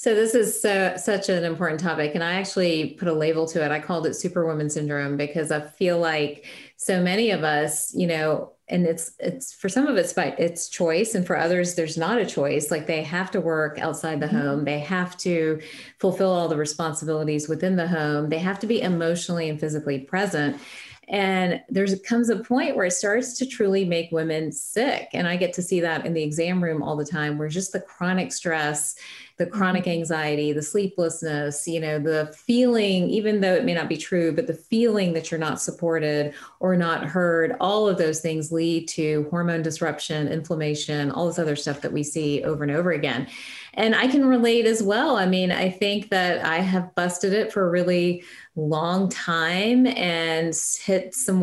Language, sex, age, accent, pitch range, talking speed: English, female, 30-49, American, 155-190 Hz, 205 wpm